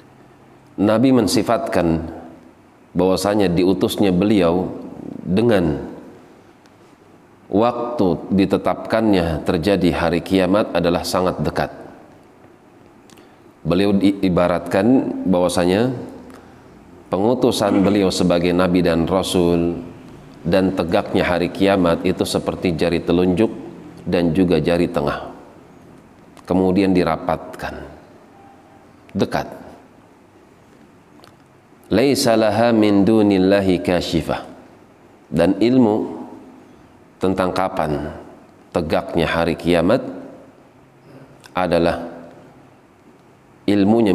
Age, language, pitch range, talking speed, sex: 40-59, Indonesian, 85-95 Hz, 70 wpm, male